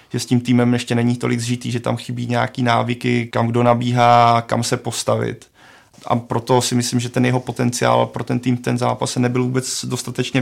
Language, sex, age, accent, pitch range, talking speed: Czech, male, 30-49, native, 115-125 Hz, 200 wpm